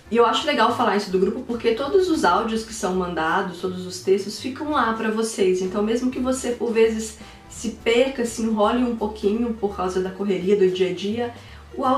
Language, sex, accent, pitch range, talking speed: Portuguese, female, Brazilian, 180-205 Hz, 205 wpm